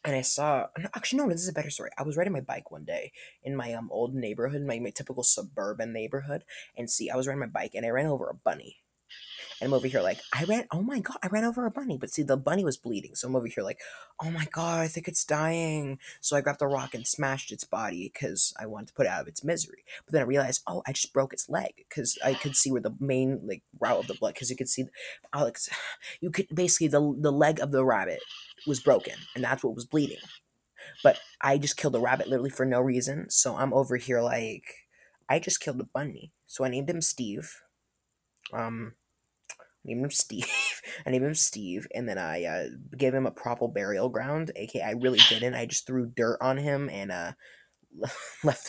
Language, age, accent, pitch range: Japanese, 20-39, American, 130-165 Hz